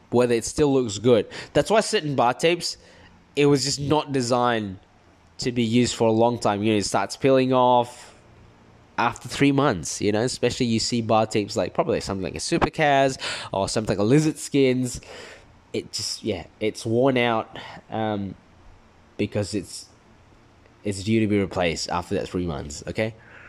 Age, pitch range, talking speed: 10-29, 110-140 Hz, 175 wpm